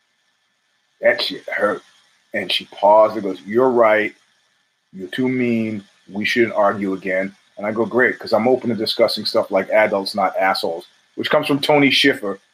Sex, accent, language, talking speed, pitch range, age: male, American, English, 170 wpm, 130-175 Hz, 30-49